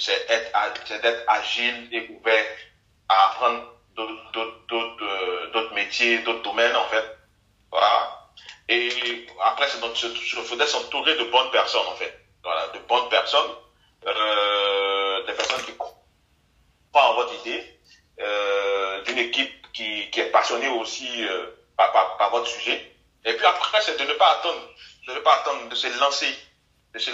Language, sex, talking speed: French, male, 155 wpm